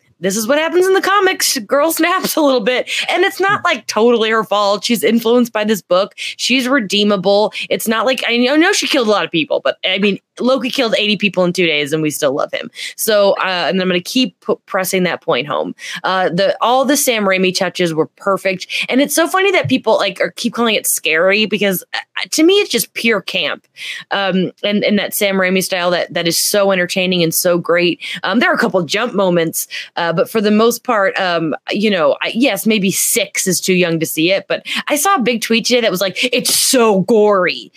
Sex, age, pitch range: female, 20-39, 185-260 Hz